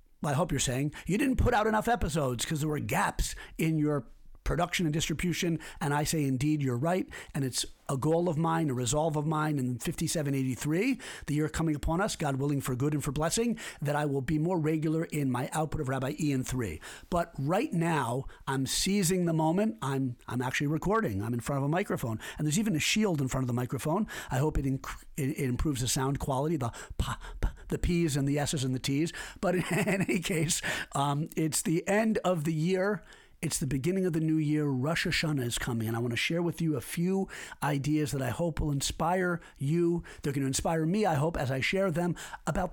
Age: 50-69